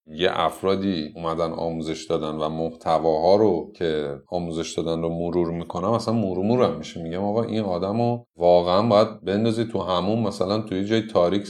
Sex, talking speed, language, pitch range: male, 165 wpm, Persian, 80-110 Hz